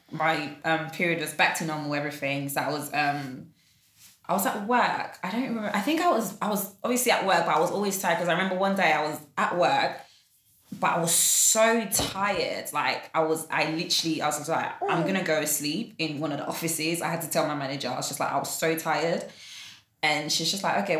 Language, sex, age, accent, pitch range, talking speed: English, female, 20-39, British, 155-220 Hz, 245 wpm